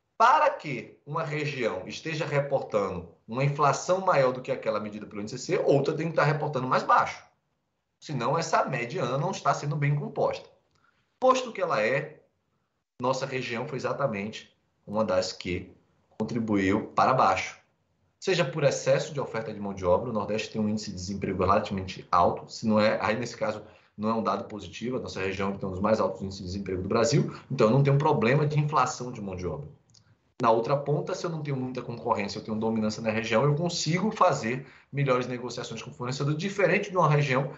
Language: Portuguese